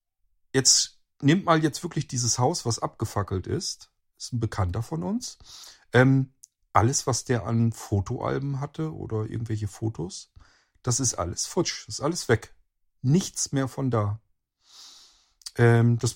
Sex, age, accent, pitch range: male, 50-69, German, 105-135 Hz